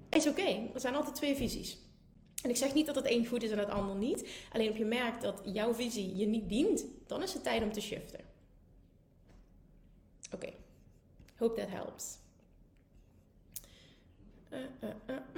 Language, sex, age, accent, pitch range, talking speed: Dutch, female, 30-49, Dutch, 215-280 Hz, 170 wpm